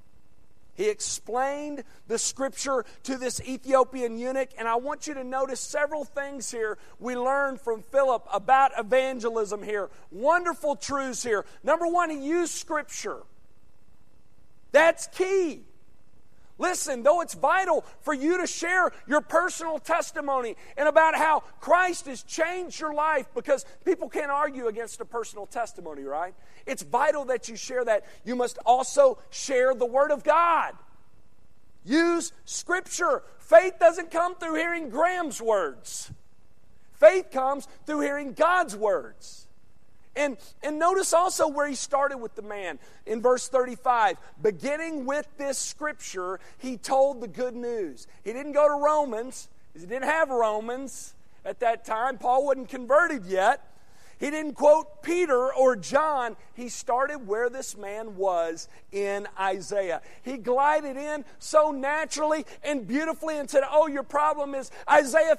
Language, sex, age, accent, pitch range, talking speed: English, male, 40-59, American, 245-310 Hz, 145 wpm